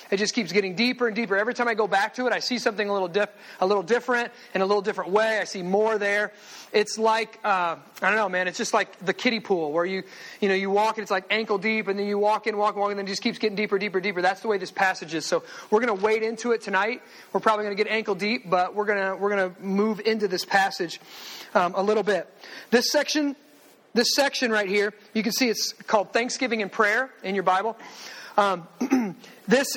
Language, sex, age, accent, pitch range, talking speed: English, male, 30-49, American, 200-245 Hz, 250 wpm